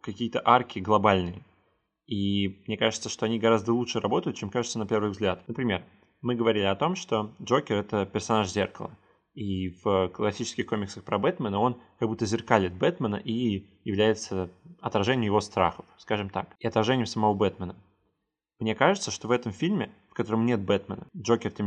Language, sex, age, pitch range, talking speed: Russian, male, 20-39, 105-120 Hz, 165 wpm